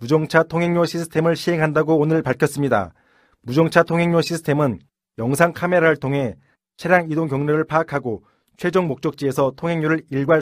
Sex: male